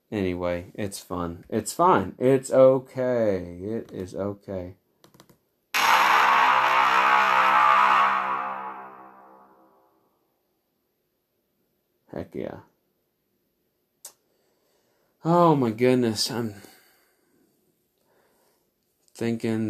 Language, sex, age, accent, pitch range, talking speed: English, male, 30-49, American, 95-145 Hz, 50 wpm